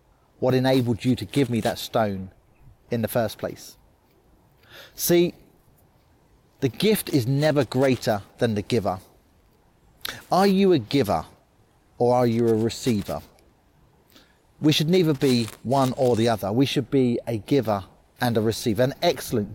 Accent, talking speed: British, 145 wpm